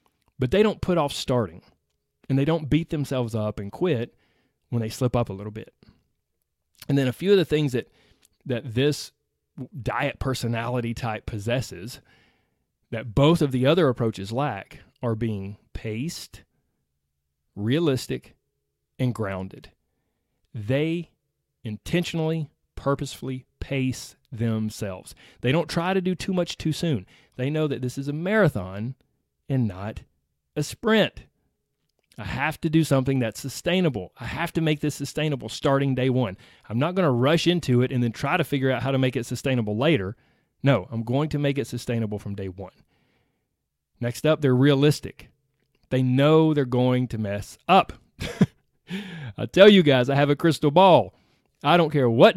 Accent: American